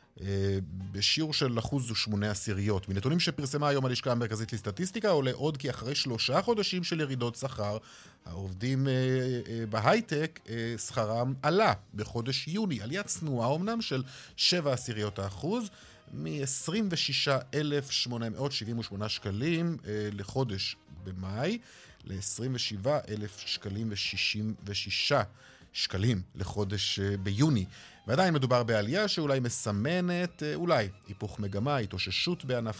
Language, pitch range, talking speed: Hebrew, 105-150 Hz, 100 wpm